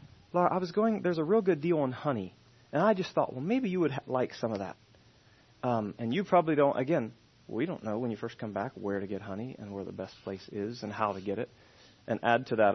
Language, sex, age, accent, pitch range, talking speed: English, male, 30-49, American, 110-165 Hz, 270 wpm